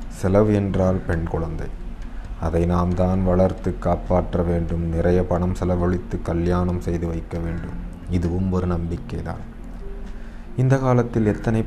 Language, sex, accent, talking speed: Tamil, male, native, 120 wpm